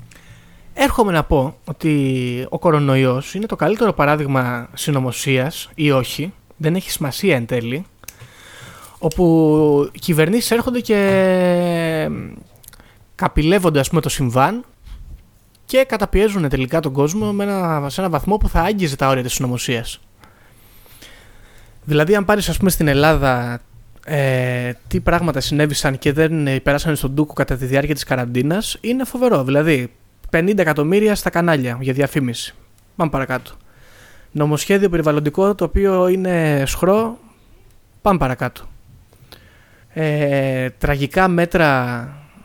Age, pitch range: 20-39, 125-170 Hz